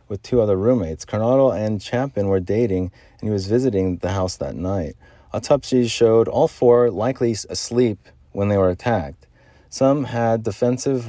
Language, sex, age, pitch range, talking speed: English, male, 30-49, 90-115 Hz, 160 wpm